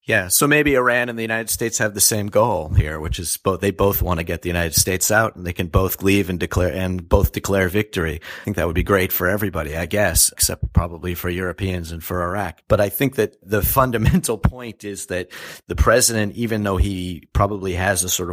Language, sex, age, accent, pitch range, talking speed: English, male, 40-59, American, 90-110 Hz, 230 wpm